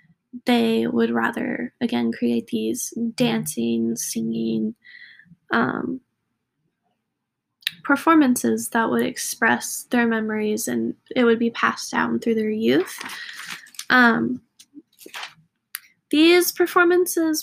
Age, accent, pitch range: 10-29, American, 225-285 Hz